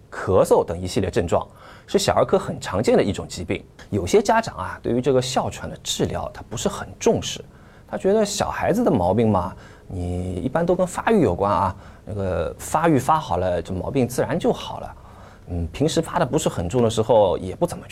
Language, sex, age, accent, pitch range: Chinese, male, 20-39, native, 100-165 Hz